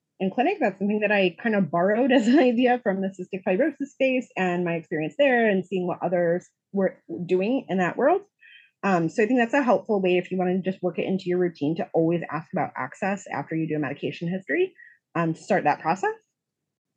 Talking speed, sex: 225 wpm, female